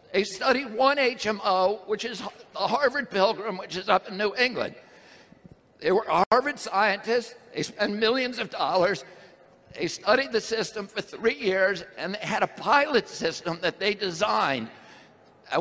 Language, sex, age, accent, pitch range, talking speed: English, male, 60-79, American, 190-245 Hz, 160 wpm